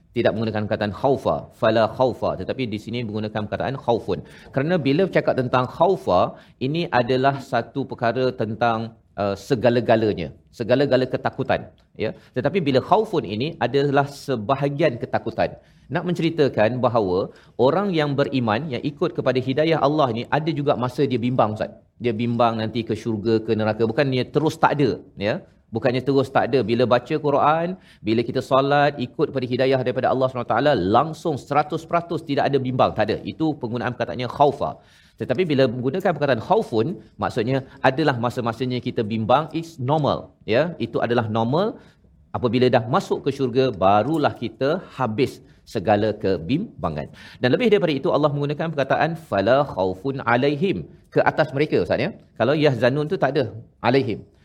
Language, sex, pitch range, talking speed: Malayalam, male, 120-145 Hz, 155 wpm